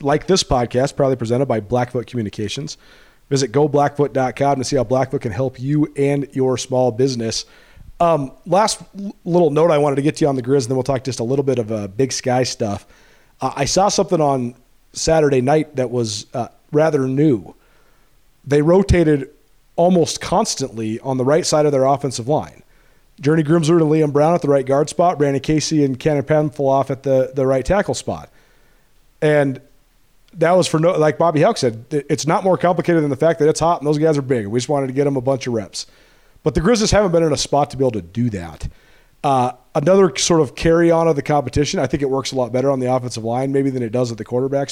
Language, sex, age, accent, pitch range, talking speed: English, male, 40-59, American, 130-160 Hz, 230 wpm